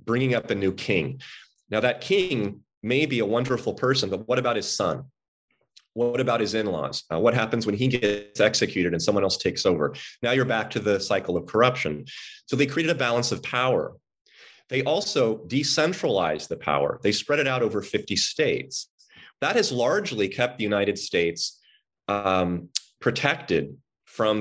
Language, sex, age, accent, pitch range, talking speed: English, male, 30-49, American, 105-130 Hz, 170 wpm